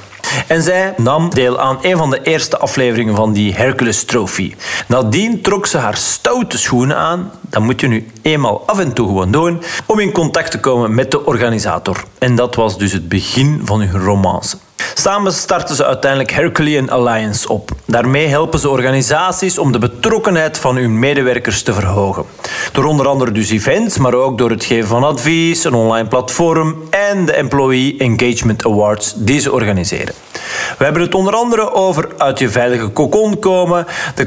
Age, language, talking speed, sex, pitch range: 40-59, Dutch, 180 wpm, male, 115-165 Hz